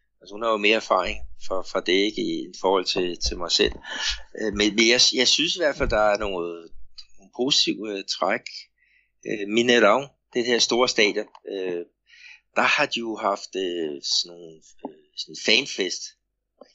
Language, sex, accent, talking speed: Danish, male, native, 150 wpm